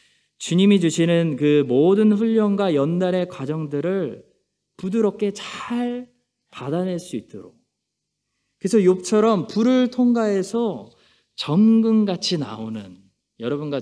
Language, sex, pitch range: Korean, male, 130-190 Hz